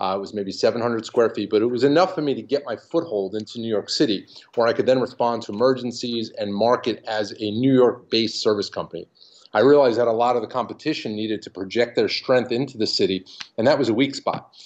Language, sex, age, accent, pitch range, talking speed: English, male, 40-59, American, 110-135 Hz, 240 wpm